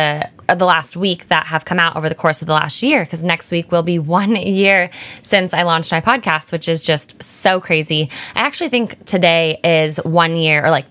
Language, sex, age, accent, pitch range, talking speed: English, female, 10-29, American, 165-215 Hz, 220 wpm